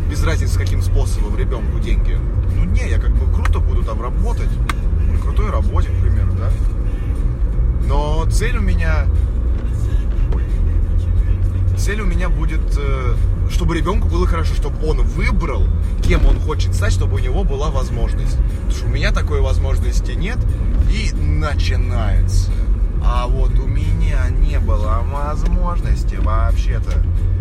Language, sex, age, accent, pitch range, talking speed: Russian, male, 20-39, native, 80-90 Hz, 135 wpm